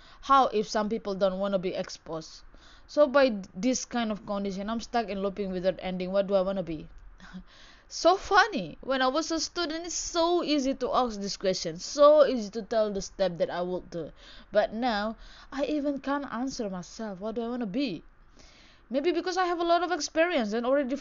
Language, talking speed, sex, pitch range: Indonesian, 210 wpm, female, 190-270 Hz